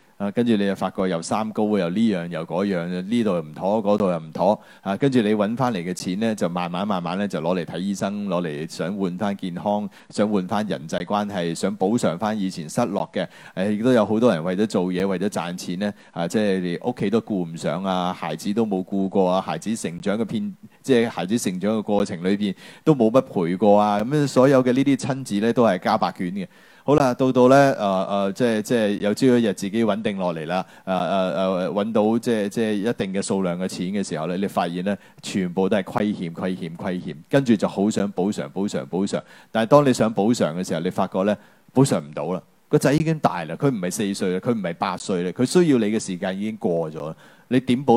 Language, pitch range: Chinese, 95-125 Hz